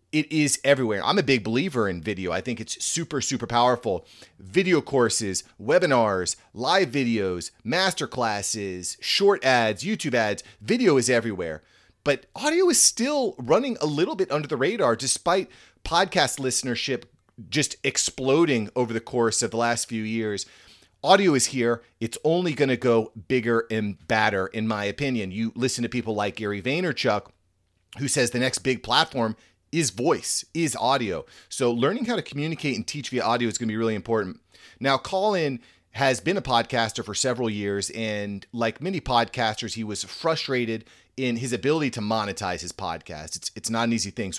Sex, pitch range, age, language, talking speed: male, 105-135 Hz, 30-49, English, 175 wpm